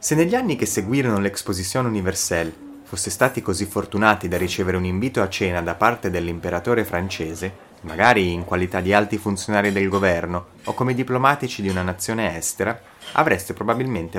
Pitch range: 90-115 Hz